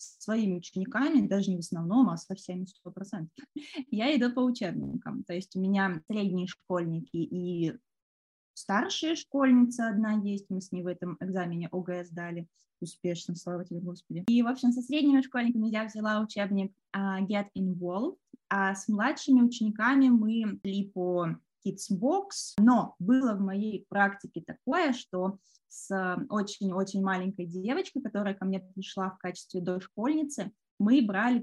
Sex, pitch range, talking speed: female, 185-235 Hz, 150 wpm